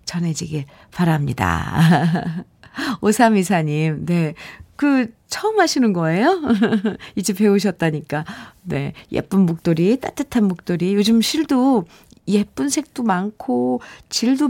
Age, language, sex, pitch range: 50-69, Korean, female, 165-255 Hz